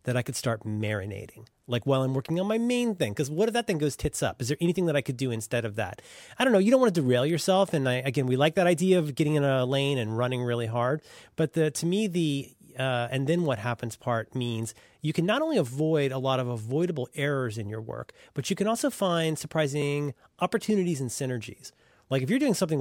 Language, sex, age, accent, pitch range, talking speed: English, male, 30-49, American, 125-175 Hz, 245 wpm